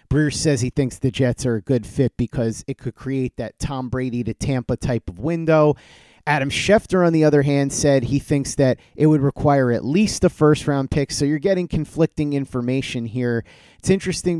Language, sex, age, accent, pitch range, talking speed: English, male, 30-49, American, 125-150 Hz, 205 wpm